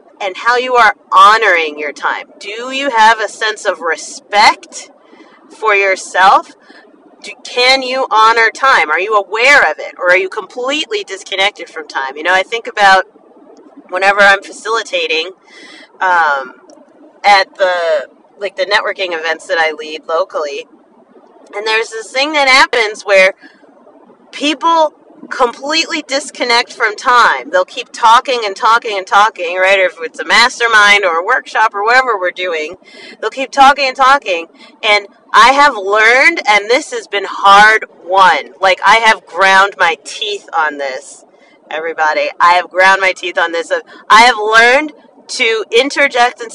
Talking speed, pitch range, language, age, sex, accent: 155 wpm, 195-265 Hz, English, 40-59, female, American